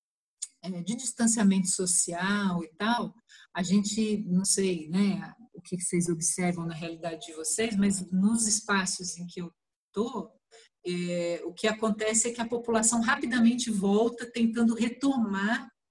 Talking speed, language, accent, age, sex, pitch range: 135 wpm, Portuguese, Brazilian, 50-69, female, 185-230 Hz